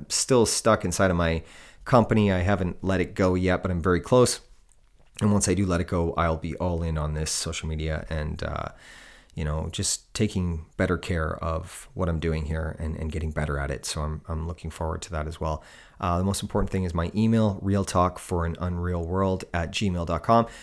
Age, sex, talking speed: 30-49, male, 205 wpm